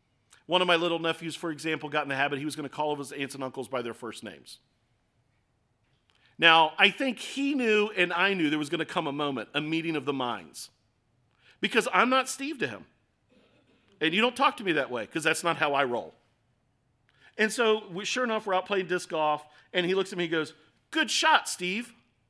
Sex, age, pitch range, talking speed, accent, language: male, 40-59, 135-195 Hz, 230 wpm, American, English